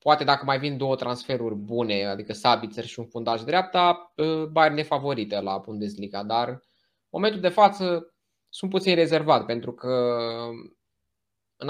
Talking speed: 140 wpm